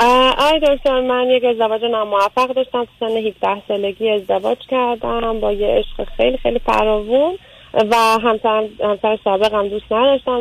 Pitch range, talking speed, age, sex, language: 210-245 Hz, 145 wpm, 30-49, female, Persian